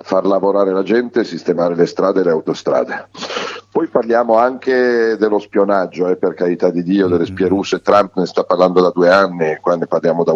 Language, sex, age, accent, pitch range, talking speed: Italian, male, 40-59, native, 90-115 Hz, 195 wpm